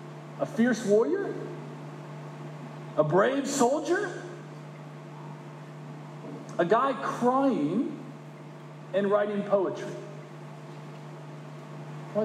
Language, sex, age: English, male, 40-59